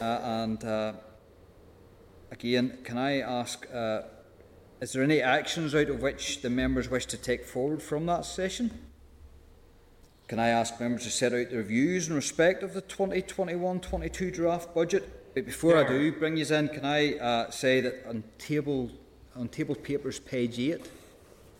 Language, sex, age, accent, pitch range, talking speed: English, male, 30-49, British, 105-130 Hz, 175 wpm